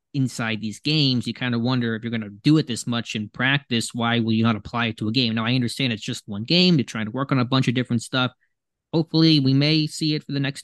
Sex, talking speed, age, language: male, 290 wpm, 20-39, English